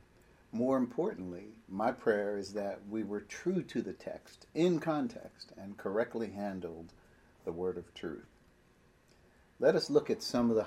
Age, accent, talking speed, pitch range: 50-69, American, 155 wpm, 95-115 Hz